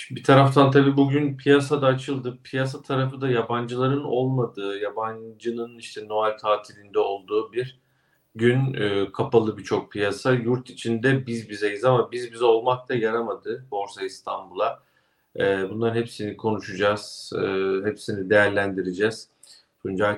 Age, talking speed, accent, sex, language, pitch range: 40-59, 130 wpm, native, male, Turkish, 105-130 Hz